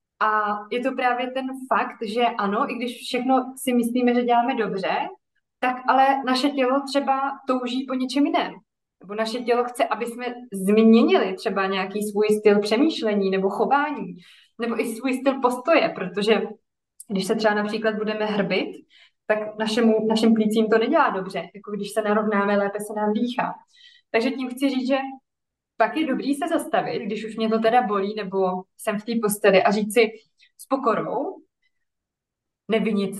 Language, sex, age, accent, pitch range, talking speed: Czech, female, 20-39, native, 215-255 Hz, 170 wpm